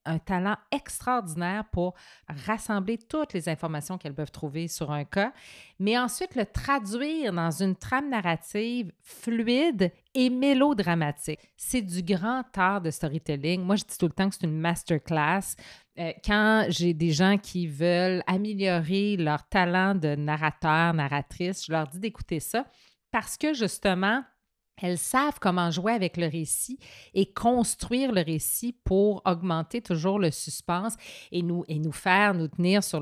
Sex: female